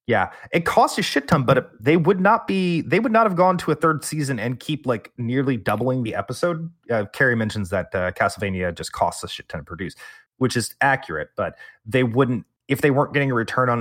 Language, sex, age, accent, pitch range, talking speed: English, male, 30-49, American, 100-145 Hz, 230 wpm